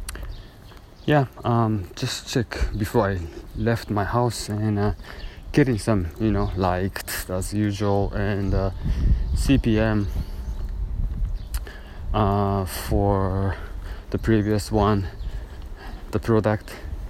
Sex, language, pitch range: male, Japanese, 85-105 Hz